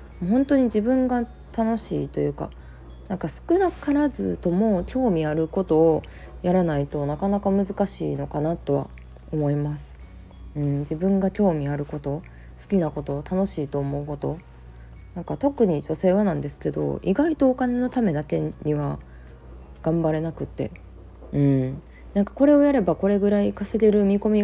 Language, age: Japanese, 20-39